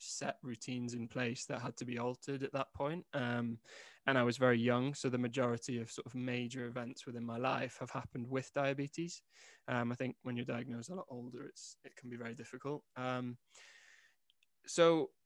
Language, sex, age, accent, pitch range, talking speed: English, male, 20-39, British, 120-135 Hz, 195 wpm